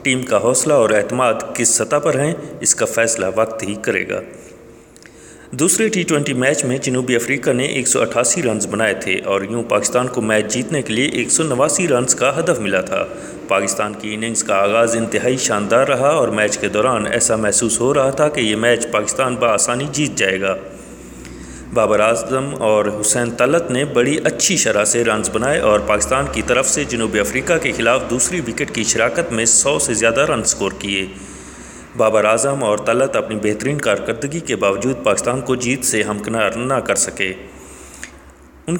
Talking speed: 180 wpm